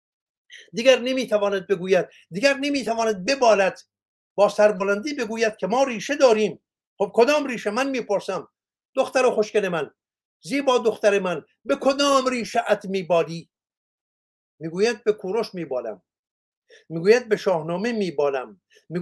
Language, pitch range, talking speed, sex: Persian, 195-245 Hz, 150 wpm, male